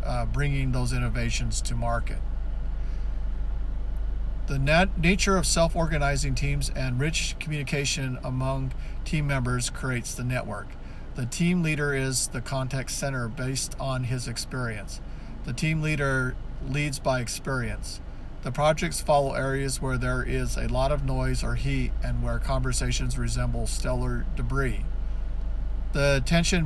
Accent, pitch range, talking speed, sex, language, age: American, 120-145 Hz, 130 wpm, male, English, 50-69